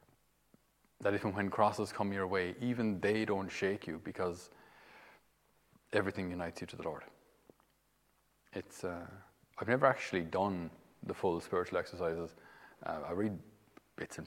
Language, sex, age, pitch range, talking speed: English, male, 30-49, 90-105 Hz, 145 wpm